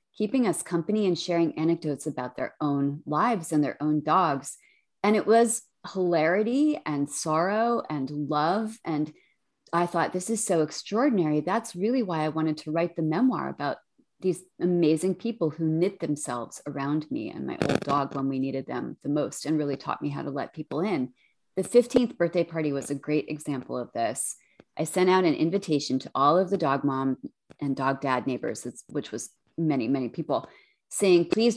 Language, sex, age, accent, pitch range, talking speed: English, female, 30-49, American, 145-190 Hz, 185 wpm